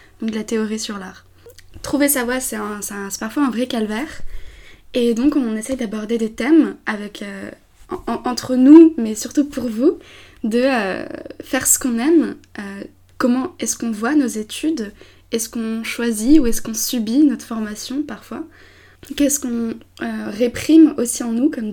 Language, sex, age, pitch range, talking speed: French, female, 20-39, 215-260 Hz, 180 wpm